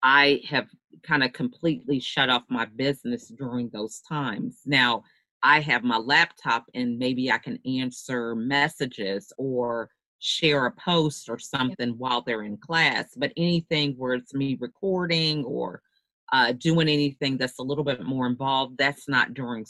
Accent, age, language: American, 40-59, English